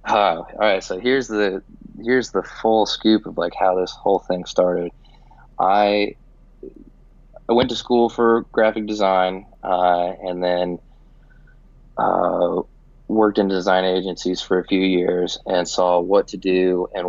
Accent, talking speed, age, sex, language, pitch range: American, 150 wpm, 20-39, male, English, 90-110 Hz